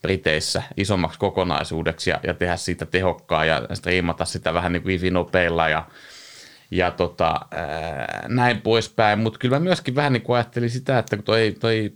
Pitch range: 90-115 Hz